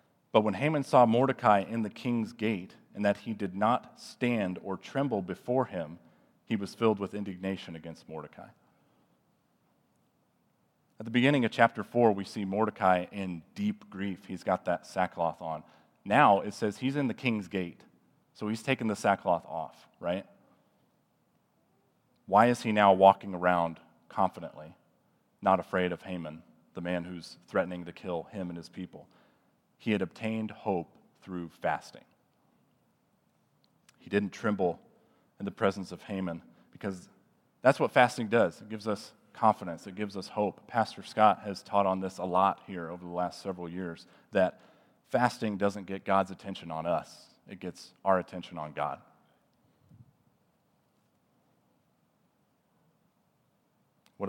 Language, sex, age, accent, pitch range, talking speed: English, male, 40-59, American, 90-110 Hz, 150 wpm